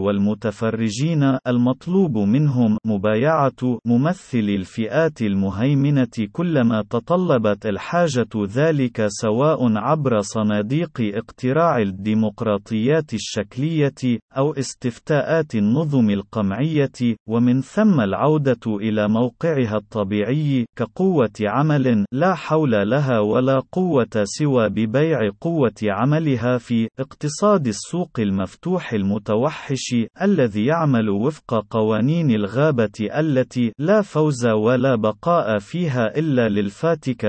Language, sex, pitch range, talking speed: Arabic, male, 110-150 Hz, 90 wpm